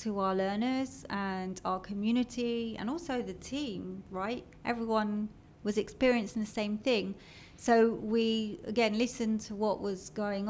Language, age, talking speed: Hebrew, 30-49, 145 wpm